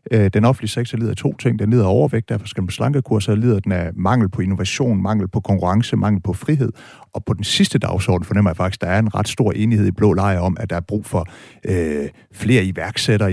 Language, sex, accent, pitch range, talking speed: Danish, male, native, 95-115 Hz, 235 wpm